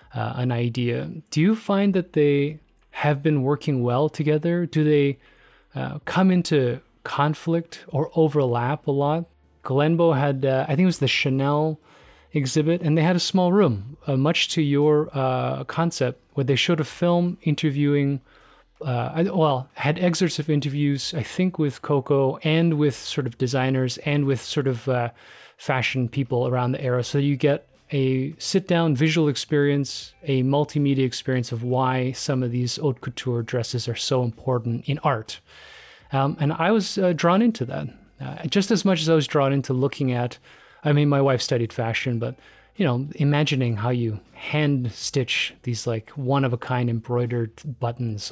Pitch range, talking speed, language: 125-155 Hz, 170 wpm, English